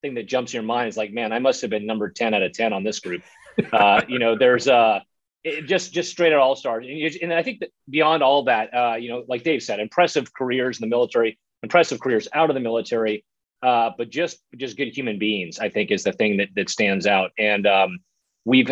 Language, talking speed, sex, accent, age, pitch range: English, 245 wpm, male, American, 30-49, 100-130 Hz